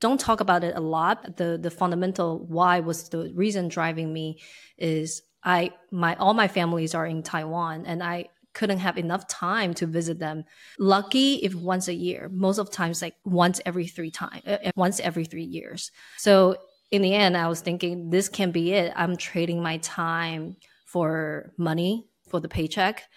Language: English